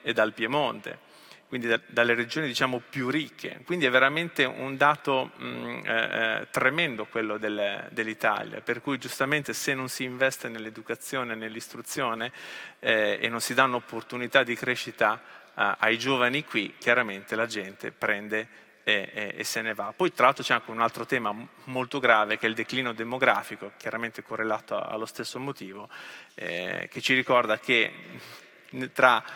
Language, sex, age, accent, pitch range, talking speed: Italian, male, 30-49, native, 115-135 Hz, 150 wpm